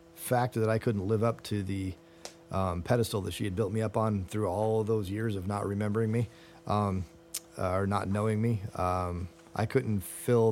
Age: 40-59